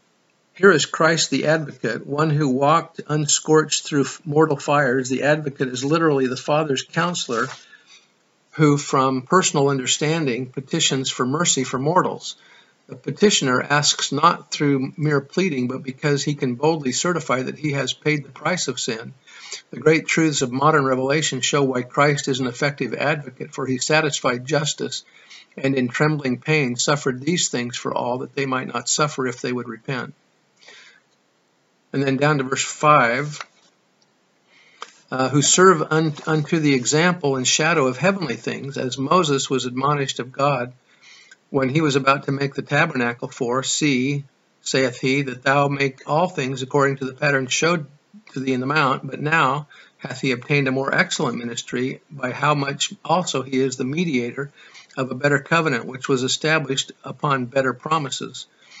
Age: 50-69